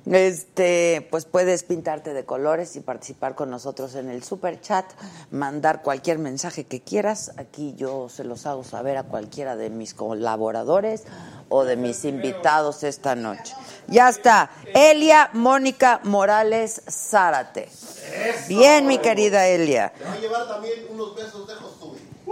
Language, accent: Spanish, Mexican